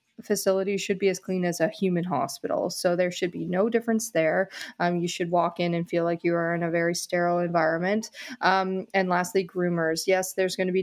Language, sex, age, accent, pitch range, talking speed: English, female, 20-39, American, 175-210 Hz, 220 wpm